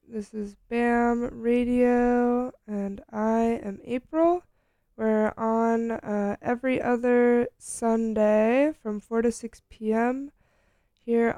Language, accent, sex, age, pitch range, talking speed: English, American, female, 20-39, 215-250 Hz, 105 wpm